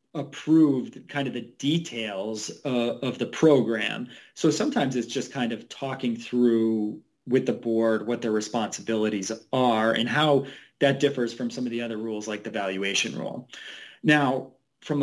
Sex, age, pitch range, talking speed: male, 30-49, 115-135 Hz, 160 wpm